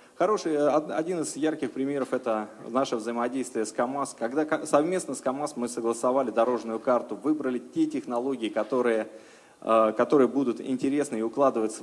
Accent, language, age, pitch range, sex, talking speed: native, Russian, 20-39, 115-140 Hz, male, 140 wpm